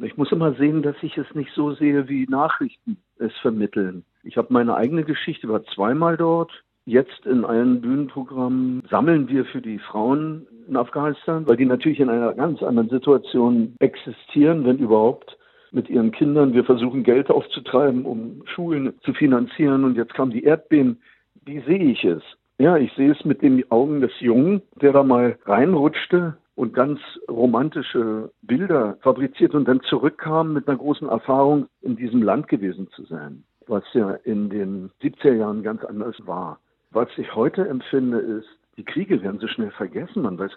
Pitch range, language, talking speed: 115-155 Hz, German, 175 wpm